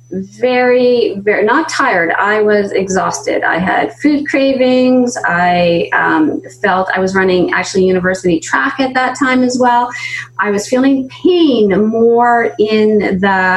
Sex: female